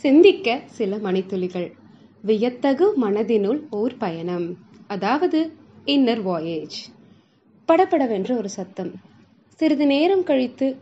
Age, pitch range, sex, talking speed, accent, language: 20-39, 200-280 Hz, female, 90 wpm, native, Tamil